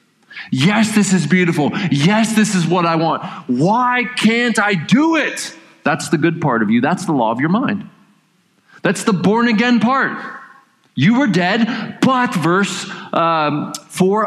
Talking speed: 165 wpm